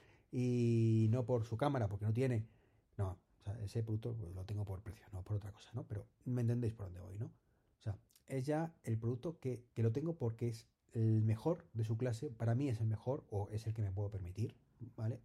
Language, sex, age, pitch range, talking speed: Spanish, male, 30-49, 105-125 Hz, 225 wpm